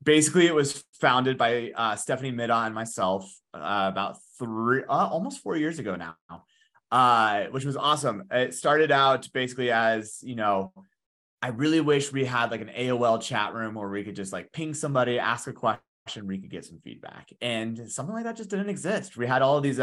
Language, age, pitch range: English, 20-39, 100-135 Hz